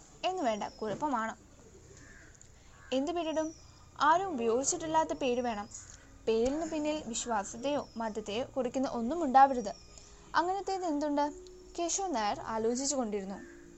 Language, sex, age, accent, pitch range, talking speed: Malayalam, female, 10-29, native, 245-325 Hz, 85 wpm